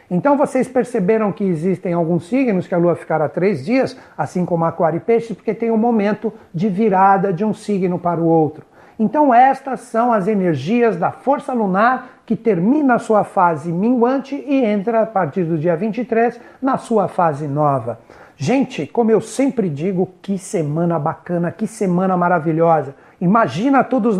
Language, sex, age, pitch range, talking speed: Portuguese, male, 60-79, 185-235 Hz, 170 wpm